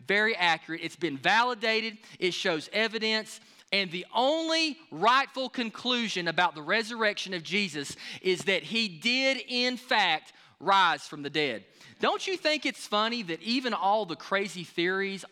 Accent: American